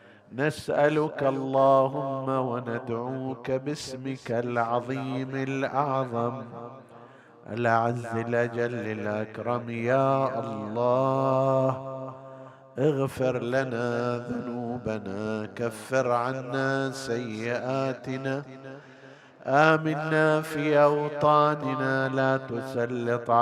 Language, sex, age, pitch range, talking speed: Arabic, male, 50-69, 115-135 Hz, 55 wpm